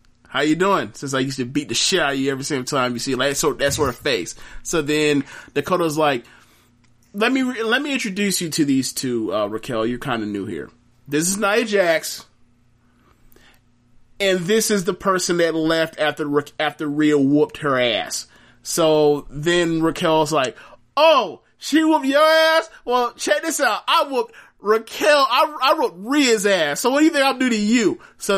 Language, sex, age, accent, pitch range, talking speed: English, male, 30-49, American, 120-175 Hz, 200 wpm